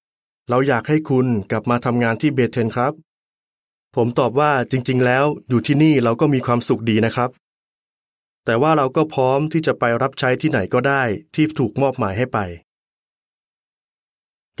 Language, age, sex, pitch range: Thai, 30-49, male, 110-135 Hz